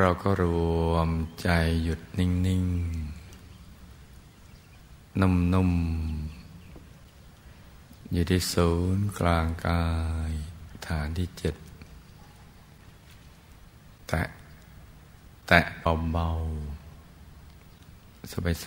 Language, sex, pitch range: Thai, male, 80-90 Hz